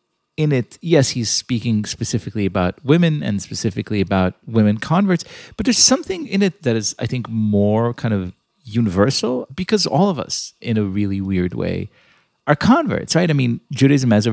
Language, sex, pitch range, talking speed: English, male, 95-125 Hz, 180 wpm